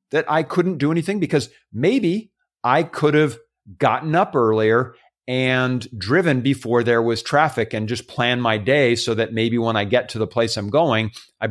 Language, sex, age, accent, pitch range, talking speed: English, male, 50-69, American, 115-160 Hz, 190 wpm